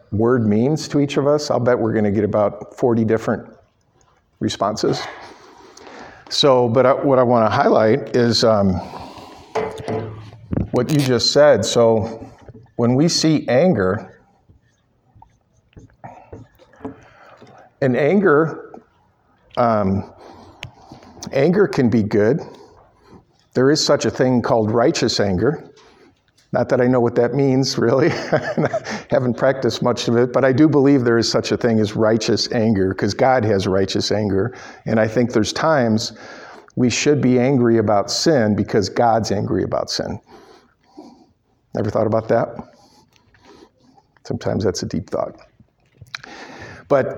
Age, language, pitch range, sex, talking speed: 50-69, English, 110-130 Hz, male, 135 wpm